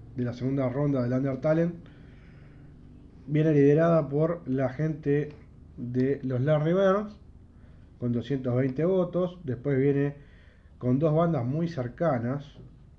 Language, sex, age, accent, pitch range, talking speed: Spanish, male, 20-39, Argentinian, 120-160 Hz, 120 wpm